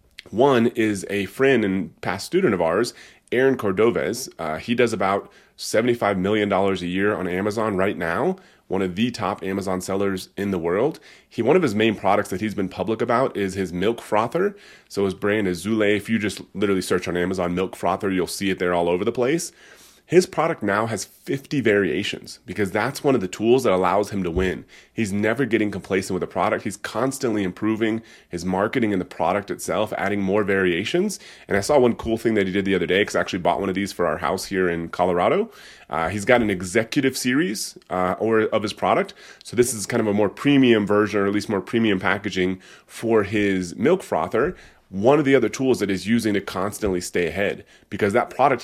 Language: English